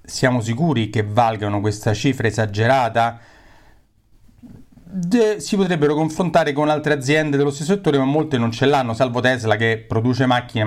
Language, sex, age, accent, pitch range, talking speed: Italian, male, 40-59, native, 110-160 Hz, 150 wpm